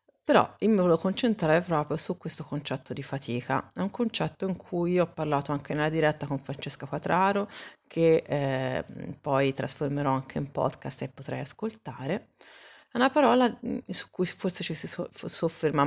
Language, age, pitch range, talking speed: Italian, 30-49, 145-185 Hz, 165 wpm